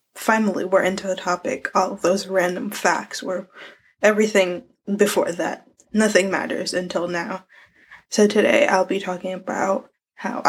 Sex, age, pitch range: female, 10-29, 185-210 Hz